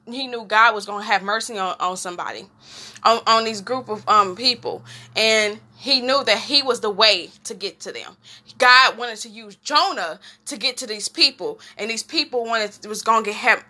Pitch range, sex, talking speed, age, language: 220-310 Hz, female, 210 wpm, 10-29, English